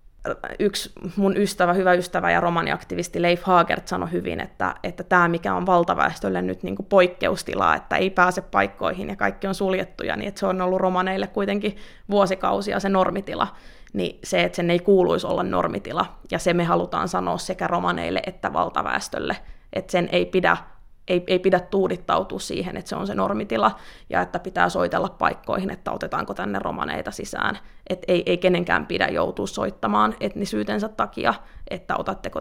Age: 20-39